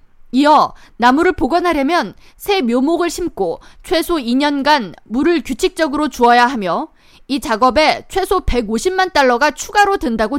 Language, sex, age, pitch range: Korean, female, 20-39, 250-360 Hz